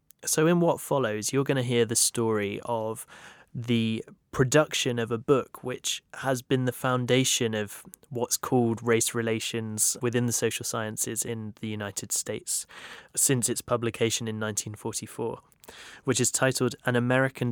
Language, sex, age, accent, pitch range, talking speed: English, male, 20-39, British, 110-125 Hz, 150 wpm